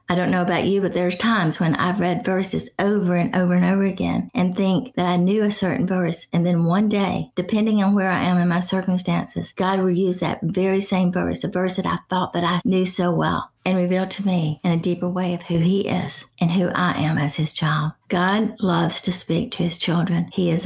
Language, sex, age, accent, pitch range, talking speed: English, female, 40-59, American, 170-190 Hz, 240 wpm